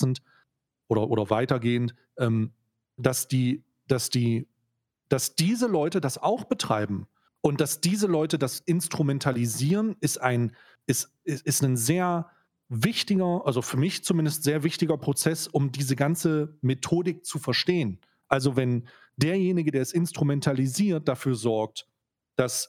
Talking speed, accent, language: 115 wpm, German, German